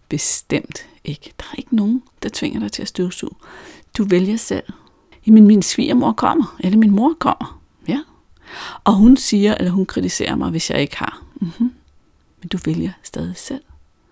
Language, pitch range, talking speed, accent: Danish, 170-255 Hz, 180 wpm, native